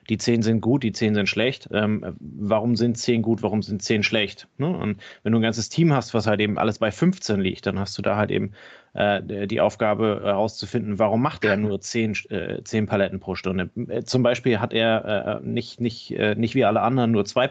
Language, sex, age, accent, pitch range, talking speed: German, male, 30-49, German, 105-120 Hz, 205 wpm